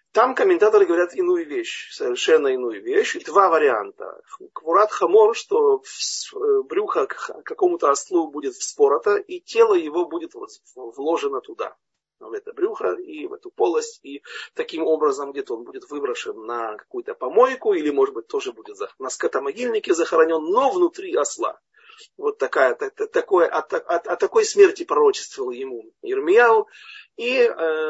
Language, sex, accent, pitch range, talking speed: Russian, male, native, 360-435 Hz, 140 wpm